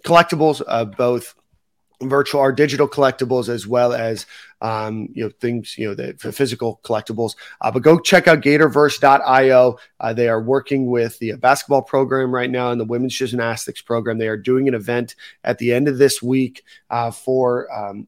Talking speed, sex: 185 wpm, male